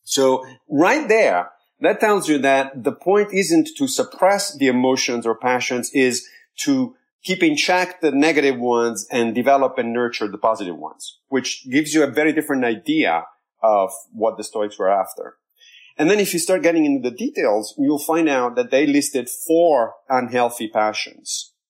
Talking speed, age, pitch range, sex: 170 wpm, 40-59, 120-160 Hz, male